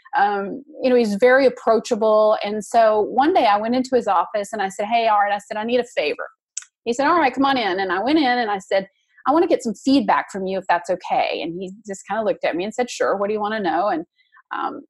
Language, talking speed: English, 285 wpm